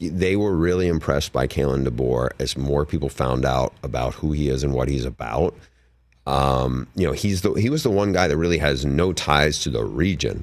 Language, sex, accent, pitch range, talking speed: English, male, American, 70-85 Hz, 220 wpm